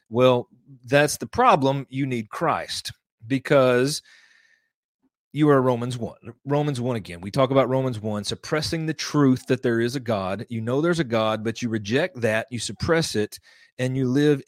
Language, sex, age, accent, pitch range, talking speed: English, male, 30-49, American, 120-150 Hz, 180 wpm